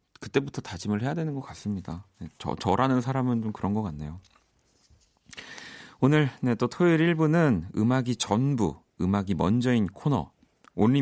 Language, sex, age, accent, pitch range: Korean, male, 40-59, native, 90-130 Hz